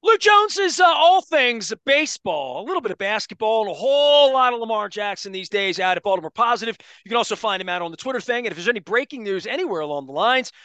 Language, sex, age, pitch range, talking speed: English, male, 30-49, 190-260 Hz, 255 wpm